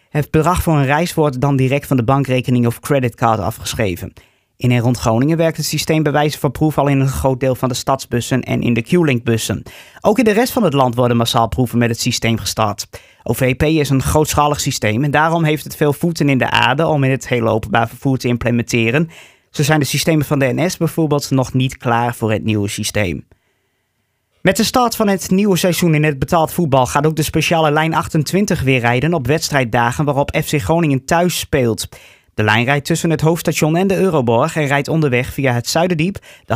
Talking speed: 215 wpm